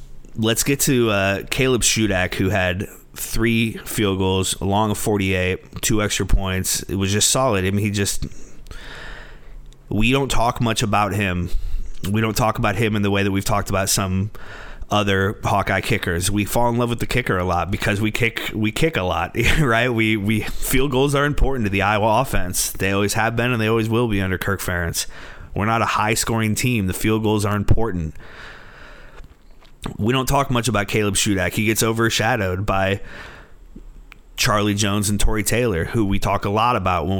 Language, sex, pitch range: English, male, 95-115 Hz